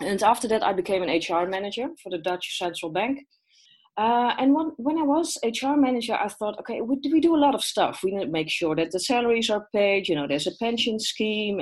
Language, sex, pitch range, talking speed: English, female, 175-240 Hz, 245 wpm